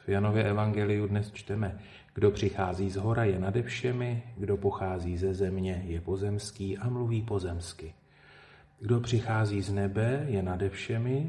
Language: Slovak